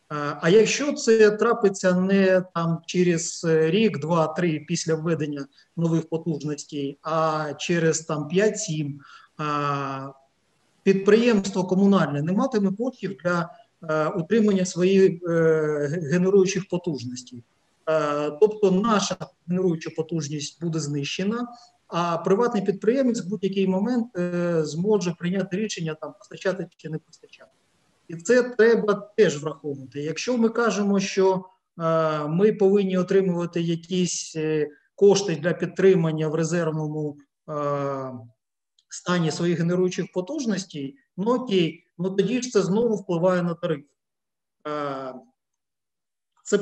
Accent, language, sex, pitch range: native, Ukrainian, male, 155-195 Hz